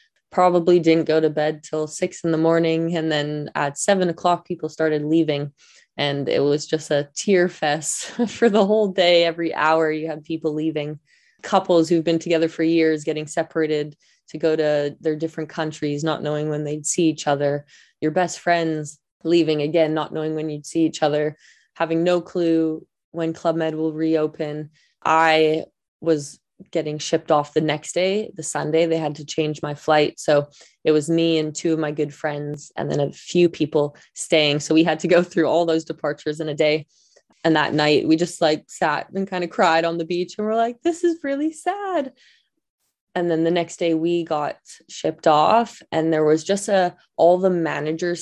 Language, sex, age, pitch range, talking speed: English, female, 20-39, 150-170 Hz, 195 wpm